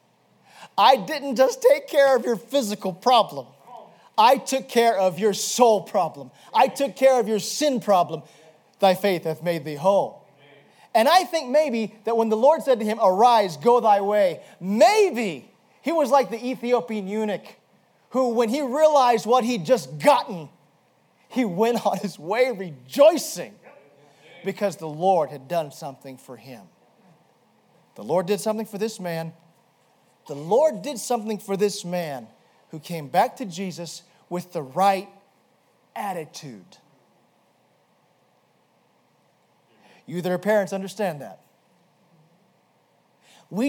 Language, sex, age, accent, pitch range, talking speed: English, male, 40-59, American, 175-250 Hz, 140 wpm